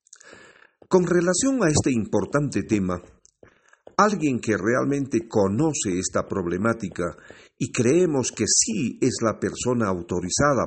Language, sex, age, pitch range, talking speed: Spanish, male, 50-69, 95-145 Hz, 110 wpm